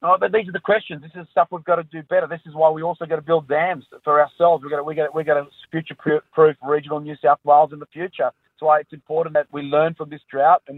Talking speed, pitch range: 285 wpm, 140-160 Hz